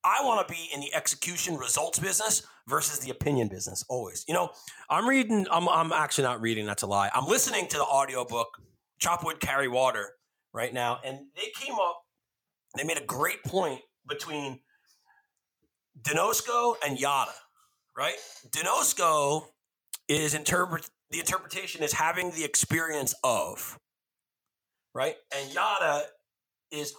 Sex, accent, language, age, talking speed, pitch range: male, American, English, 40-59, 140 wpm, 135-185 Hz